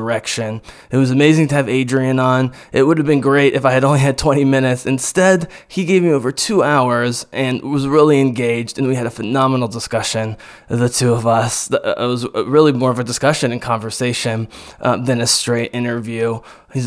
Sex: male